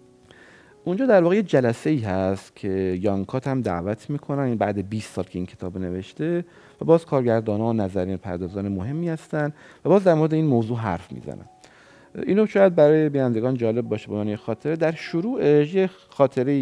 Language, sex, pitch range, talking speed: Persian, male, 95-145 Hz, 170 wpm